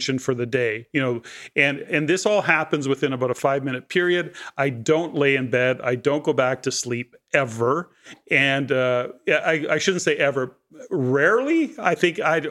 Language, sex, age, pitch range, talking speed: English, male, 40-59, 130-150 Hz, 185 wpm